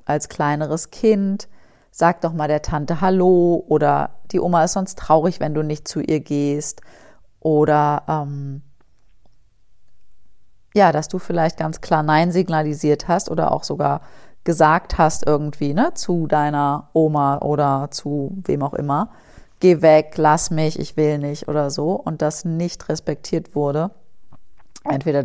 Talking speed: 145 wpm